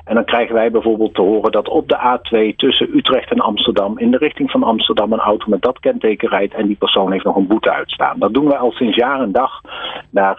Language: Dutch